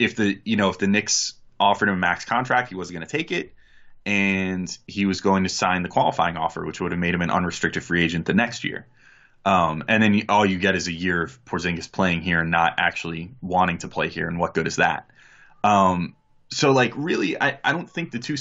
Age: 20-39